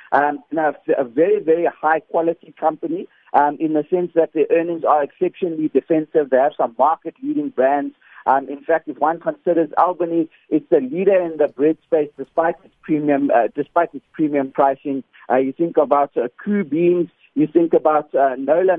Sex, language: male, English